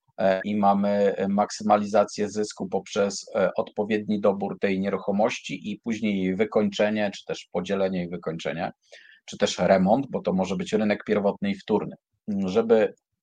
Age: 40-59